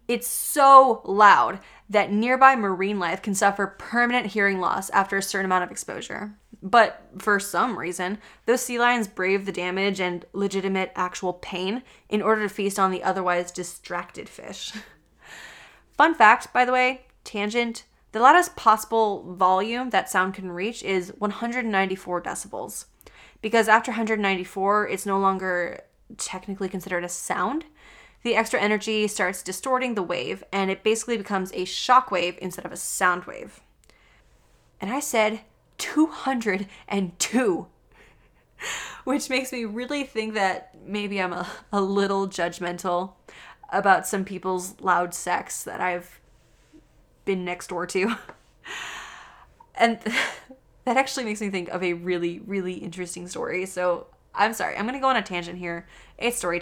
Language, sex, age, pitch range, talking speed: English, female, 20-39, 185-230 Hz, 145 wpm